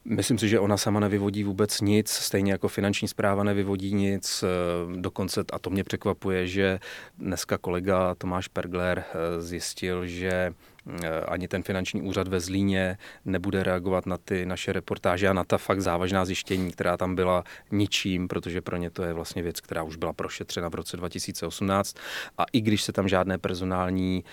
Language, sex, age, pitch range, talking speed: Czech, male, 30-49, 85-95 Hz, 170 wpm